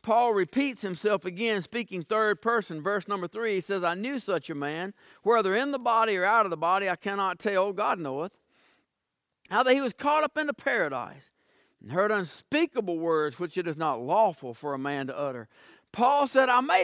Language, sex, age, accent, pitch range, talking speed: English, male, 50-69, American, 205-260 Hz, 205 wpm